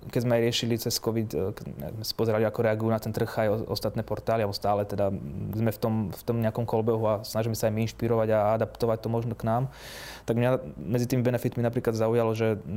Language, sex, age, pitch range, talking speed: Slovak, male, 20-39, 110-120 Hz, 225 wpm